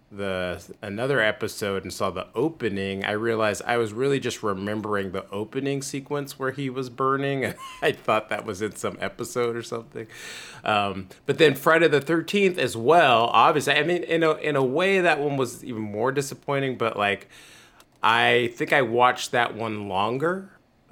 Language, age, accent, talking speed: English, 30-49, American, 175 wpm